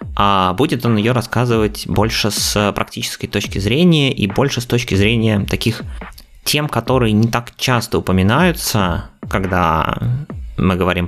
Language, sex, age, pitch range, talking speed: Russian, male, 20-39, 95-120 Hz, 130 wpm